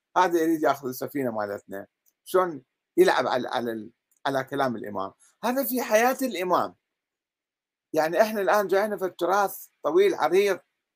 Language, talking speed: Arabic, 140 wpm